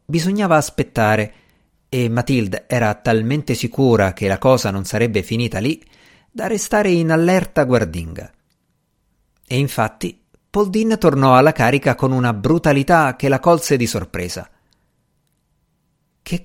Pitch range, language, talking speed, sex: 110-160 Hz, Italian, 125 wpm, male